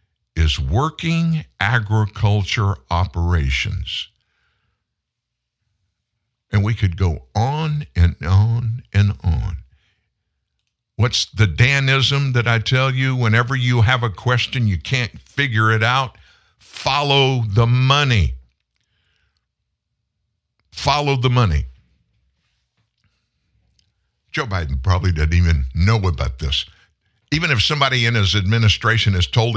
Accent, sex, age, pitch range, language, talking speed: American, male, 60-79, 90-125 Hz, English, 105 wpm